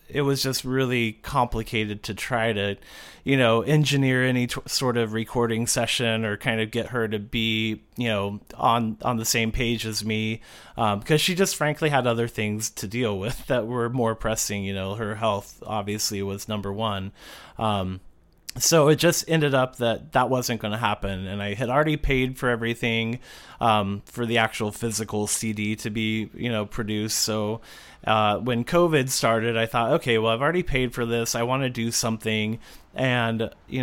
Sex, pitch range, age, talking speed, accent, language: male, 110-130 Hz, 30-49, 190 wpm, American, English